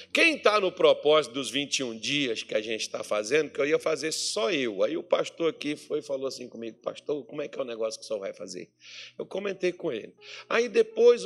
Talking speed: 240 wpm